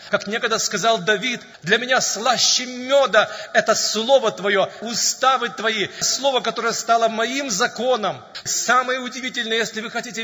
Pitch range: 190-230 Hz